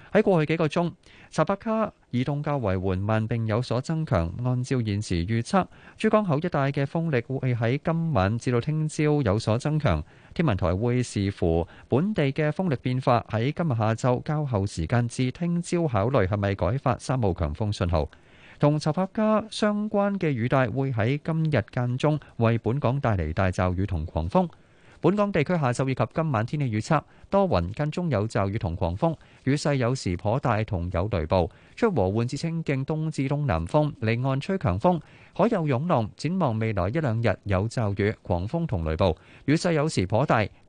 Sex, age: male, 30-49